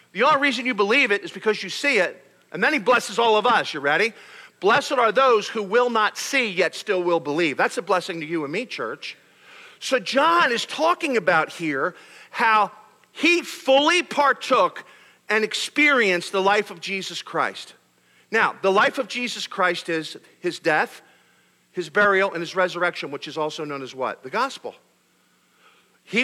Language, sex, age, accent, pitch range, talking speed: English, male, 50-69, American, 185-260 Hz, 180 wpm